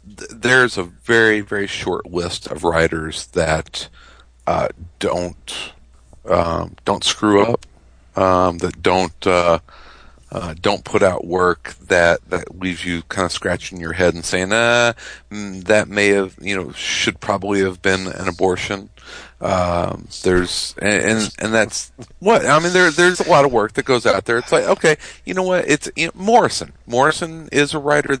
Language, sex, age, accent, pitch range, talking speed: English, male, 40-59, American, 85-110 Hz, 170 wpm